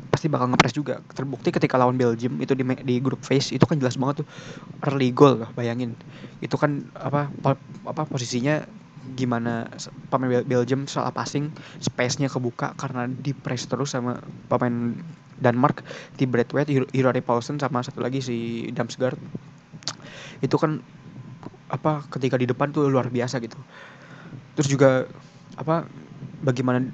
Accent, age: native, 20-39